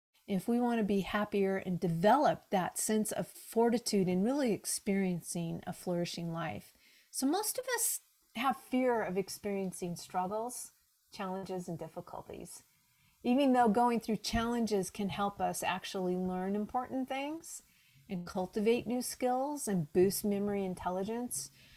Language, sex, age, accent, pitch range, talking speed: English, female, 40-59, American, 175-225 Hz, 140 wpm